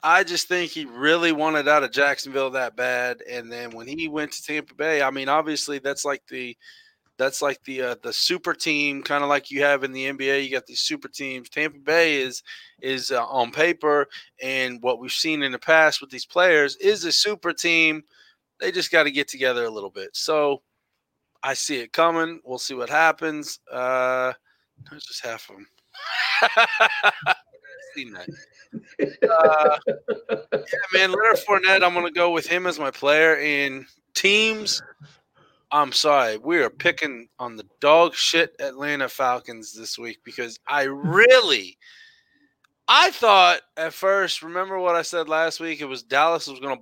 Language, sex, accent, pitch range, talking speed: English, male, American, 130-180 Hz, 175 wpm